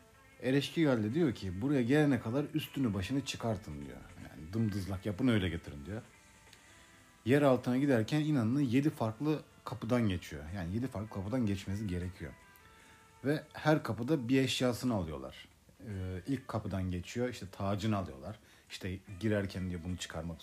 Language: Turkish